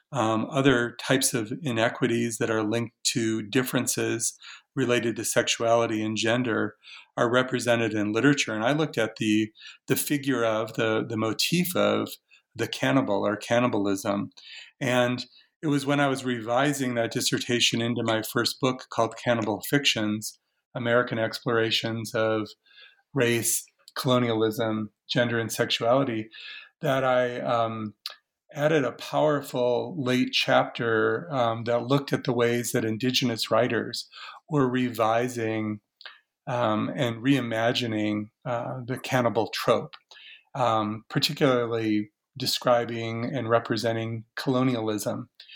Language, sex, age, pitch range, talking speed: English, male, 40-59, 115-130 Hz, 120 wpm